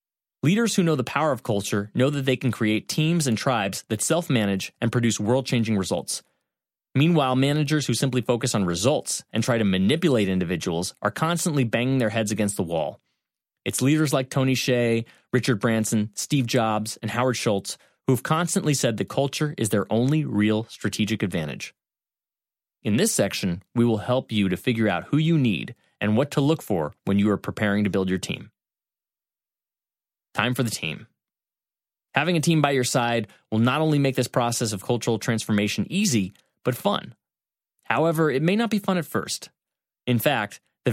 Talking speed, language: 180 wpm, English